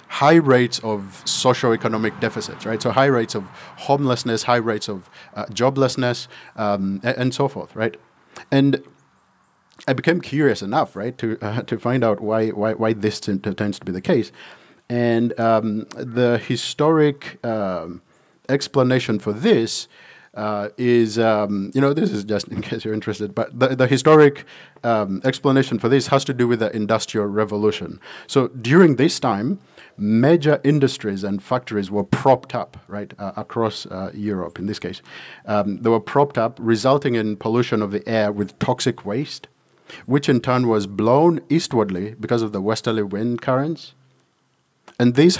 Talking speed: 165 wpm